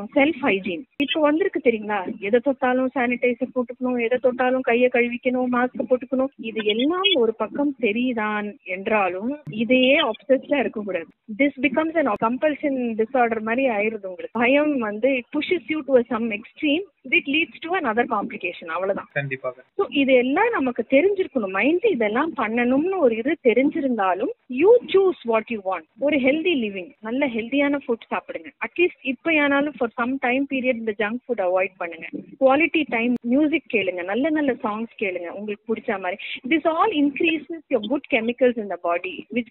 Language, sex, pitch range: Tamil, female, 220-285 Hz